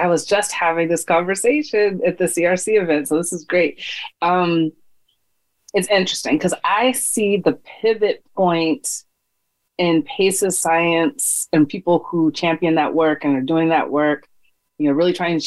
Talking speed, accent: 165 wpm, American